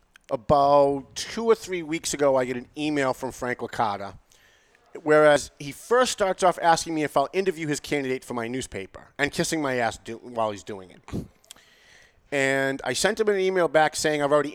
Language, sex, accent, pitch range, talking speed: English, male, American, 120-165 Hz, 190 wpm